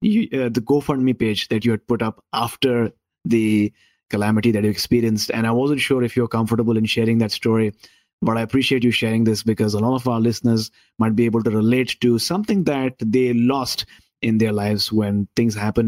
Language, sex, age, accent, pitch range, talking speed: English, male, 30-49, Indian, 110-135 Hz, 205 wpm